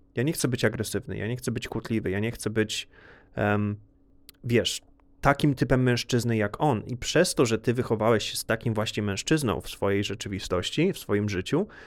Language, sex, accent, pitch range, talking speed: Polish, male, native, 105-125 Hz, 185 wpm